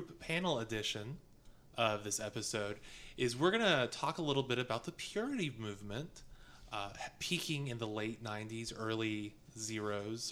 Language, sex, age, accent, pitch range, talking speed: English, male, 20-39, American, 115-150 Hz, 140 wpm